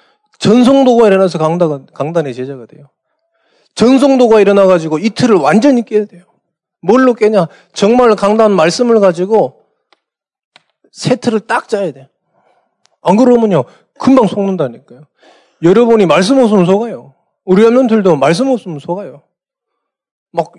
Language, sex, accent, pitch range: Korean, male, native, 160-230 Hz